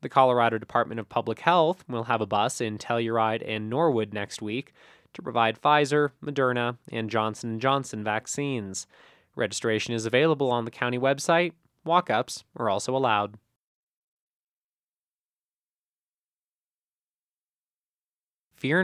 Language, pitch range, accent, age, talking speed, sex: English, 115-155 Hz, American, 20-39, 115 wpm, male